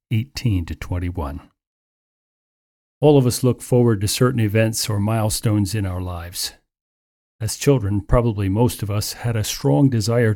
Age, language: 50-69, English